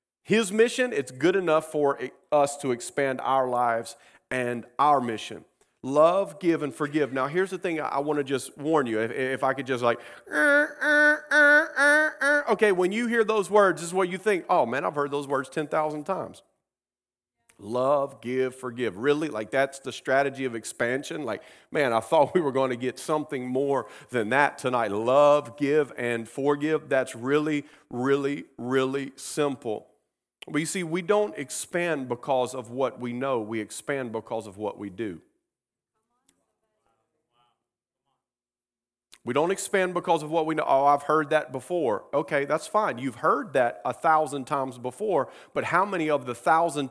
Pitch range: 130-160 Hz